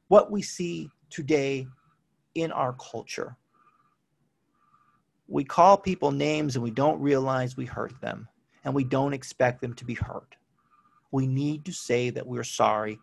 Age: 40-59